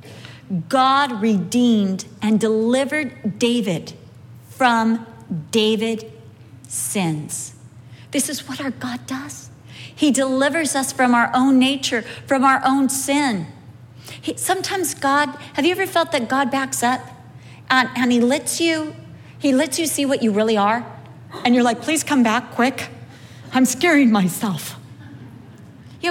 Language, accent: English, American